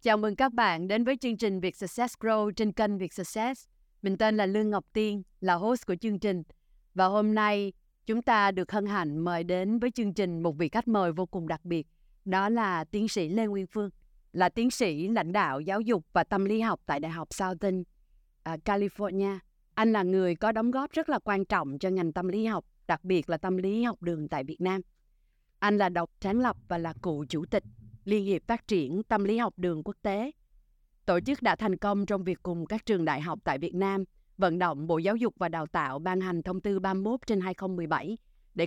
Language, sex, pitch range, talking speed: Vietnamese, female, 175-210 Hz, 225 wpm